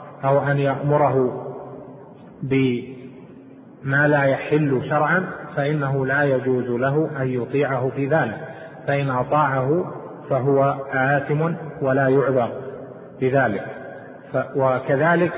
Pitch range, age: 130-150 Hz, 30-49